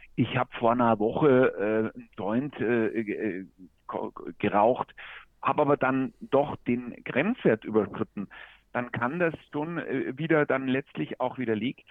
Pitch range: 110-145 Hz